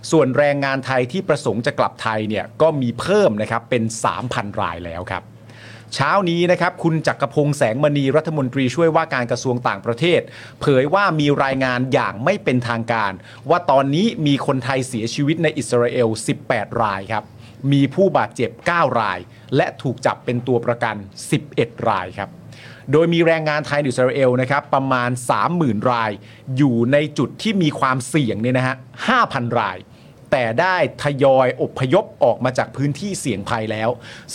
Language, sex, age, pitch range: Thai, male, 30-49, 120-150 Hz